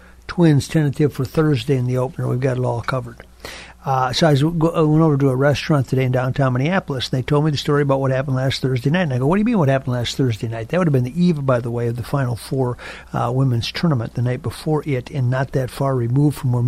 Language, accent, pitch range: English, American, 120-140 Hz